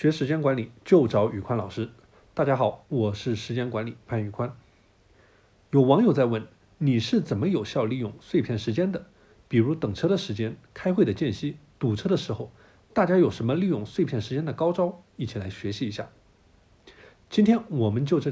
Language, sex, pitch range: Chinese, male, 110-175 Hz